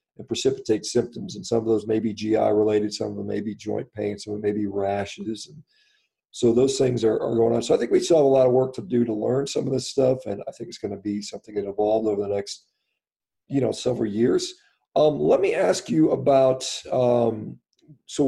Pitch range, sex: 110-140 Hz, male